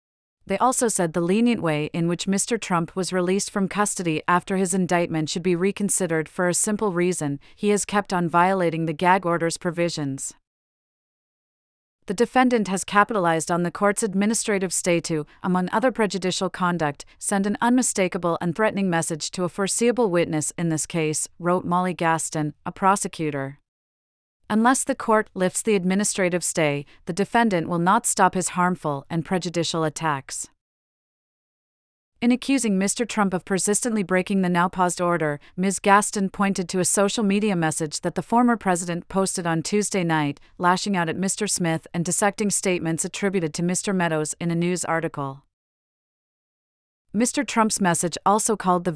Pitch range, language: 165-200 Hz, English